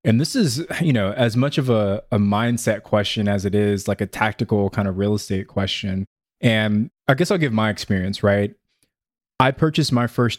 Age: 20-39